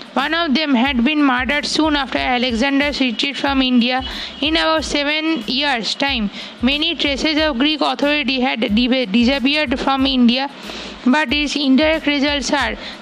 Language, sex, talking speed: English, female, 145 wpm